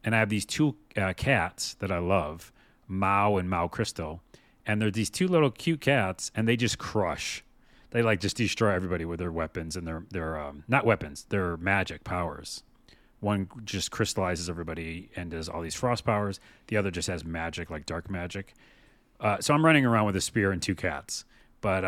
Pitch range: 90-115 Hz